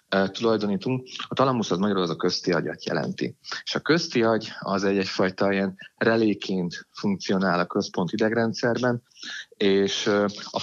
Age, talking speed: 30-49, 140 wpm